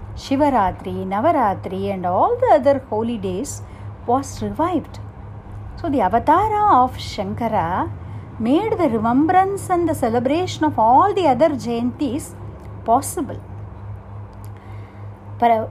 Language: Tamil